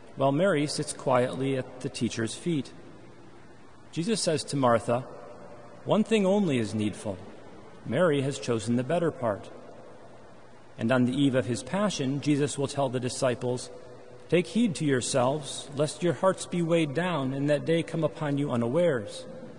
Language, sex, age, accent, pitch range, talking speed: English, male, 40-59, American, 120-165 Hz, 160 wpm